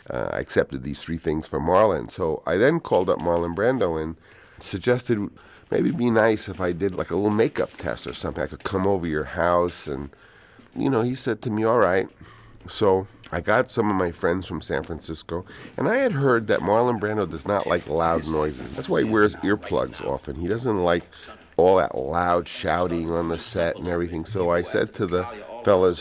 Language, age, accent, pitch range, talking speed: English, 50-69, American, 80-100 Hz, 210 wpm